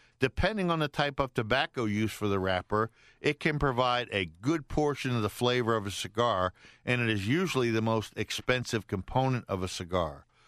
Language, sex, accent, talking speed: English, male, American, 190 wpm